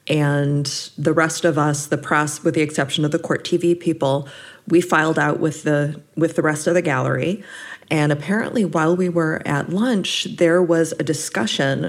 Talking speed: 185 wpm